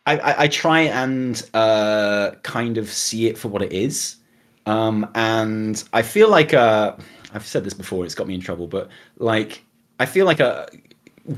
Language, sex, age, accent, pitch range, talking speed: English, male, 20-39, British, 95-125 Hz, 185 wpm